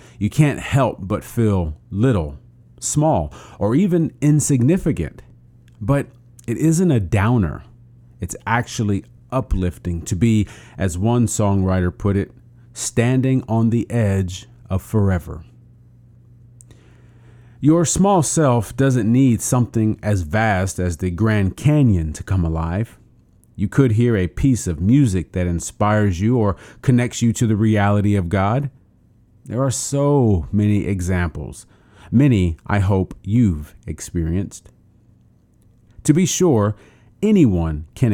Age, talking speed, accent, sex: 40-59, 125 wpm, American, male